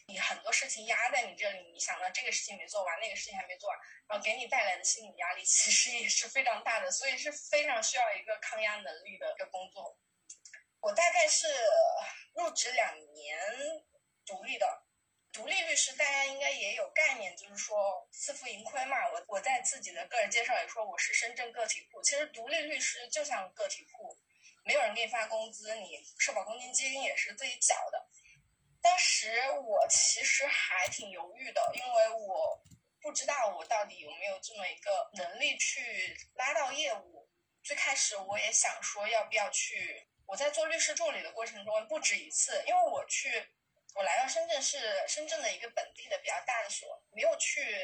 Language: Chinese